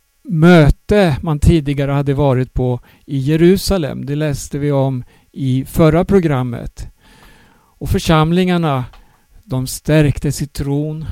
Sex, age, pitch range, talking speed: male, 50-69, 135-165 Hz, 115 wpm